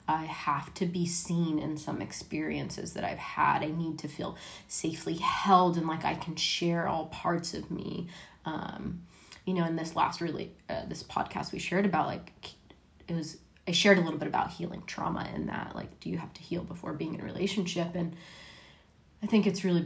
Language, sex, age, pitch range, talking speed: English, female, 20-39, 165-190 Hz, 205 wpm